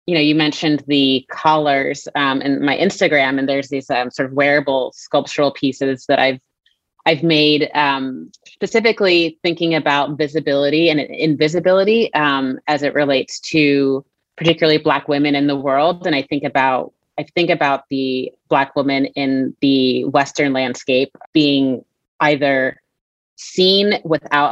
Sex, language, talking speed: female, English, 145 wpm